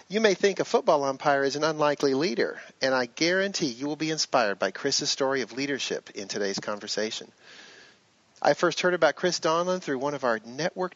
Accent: American